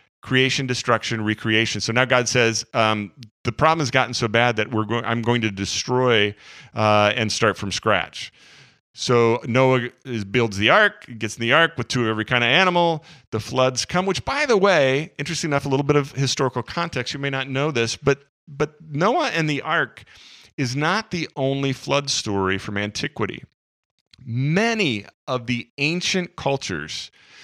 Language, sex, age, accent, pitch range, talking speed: English, male, 40-59, American, 110-140 Hz, 180 wpm